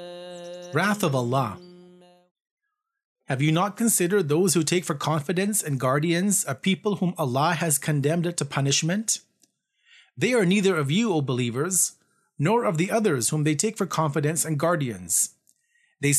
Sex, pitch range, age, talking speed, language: male, 150-195 Hz, 30-49, 150 wpm, English